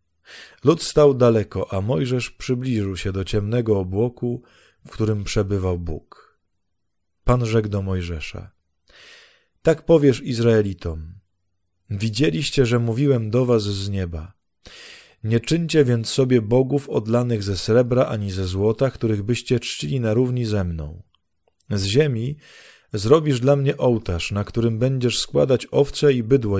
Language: Polish